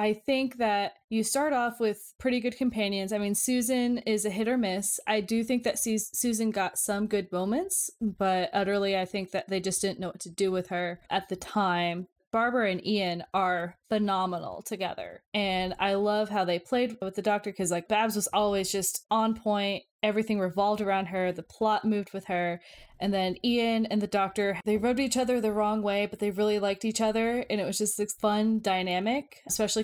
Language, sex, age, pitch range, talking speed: English, female, 20-39, 185-220 Hz, 205 wpm